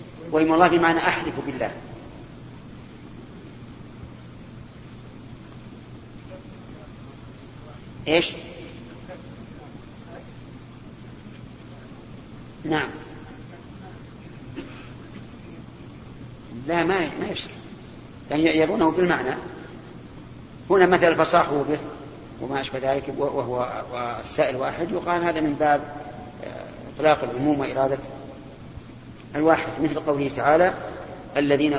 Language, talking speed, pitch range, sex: Arabic, 70 wpm, 135-165 Hz, male